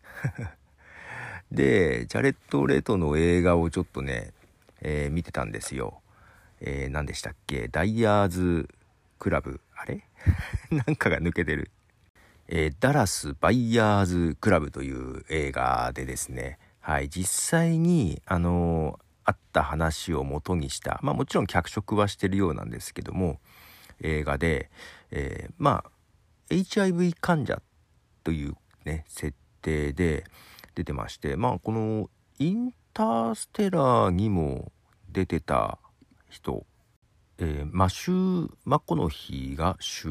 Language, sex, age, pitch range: Japanese, male, 50-69, 75-105 Hz